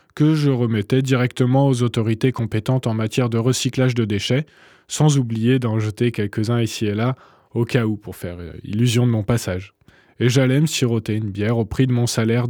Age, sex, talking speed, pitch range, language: 20-39, male, 195 wpm, 110-130 Hz, French